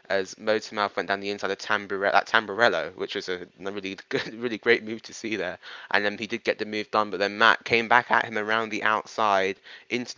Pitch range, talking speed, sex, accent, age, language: 95-110 Hz, 235 wpm, male, British, 10-29, English